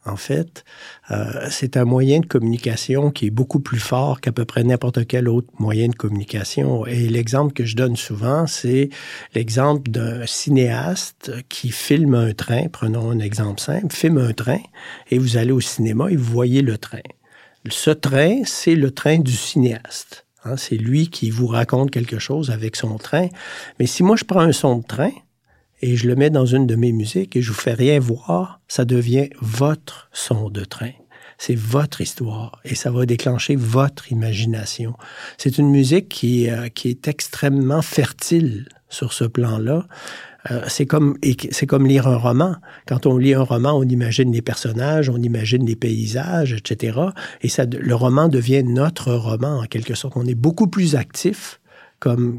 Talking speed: 185 wpm